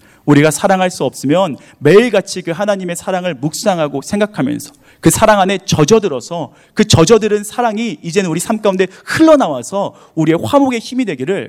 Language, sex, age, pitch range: Korean, male, 30-49, 140-200 Hz